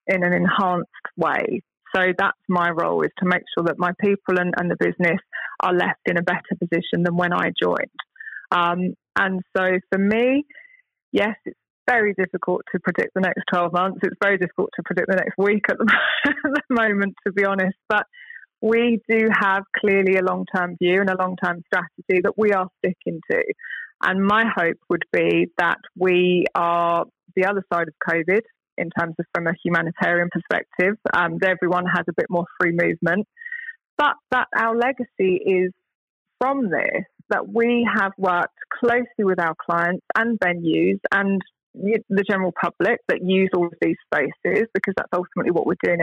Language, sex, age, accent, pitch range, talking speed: English, female, 20-39, British, 180-225 Hz, 180 wpm